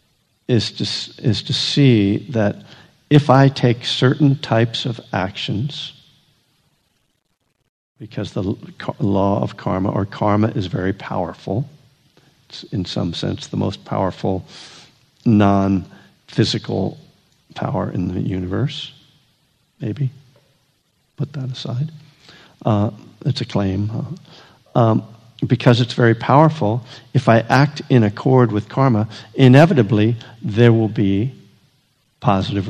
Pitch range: 105-140 Hz